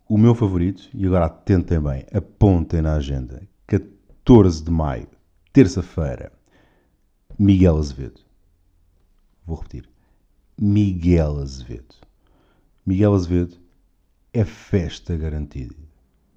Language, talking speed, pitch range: Portuguese, 90 wpm, 80-115 Hz